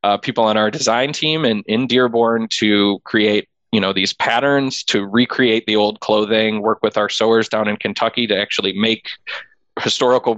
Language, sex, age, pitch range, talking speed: English, male, 20-39, 105-120 Hz, 185 wpm